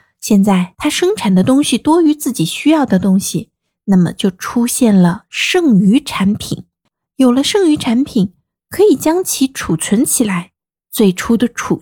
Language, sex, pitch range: Chinese, female, 195-280 Hz